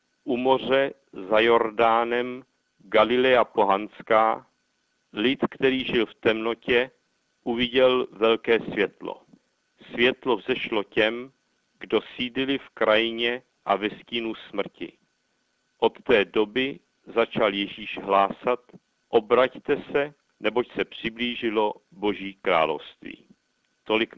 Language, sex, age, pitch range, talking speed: Czech, male, 50-69, 110-130 Hz, 95 wpm